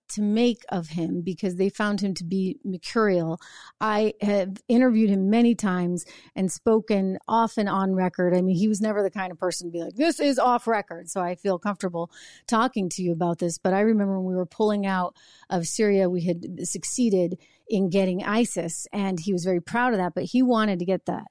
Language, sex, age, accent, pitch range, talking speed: English, female, 30-49, American, 180-220 Hz, 215 wpm